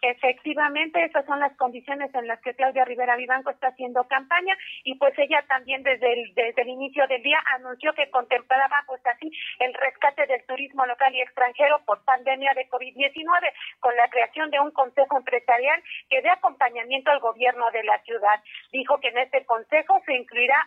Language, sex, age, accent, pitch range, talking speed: Spanish, female, 40-59, Mexican, 250-300 Hz, 185 wpm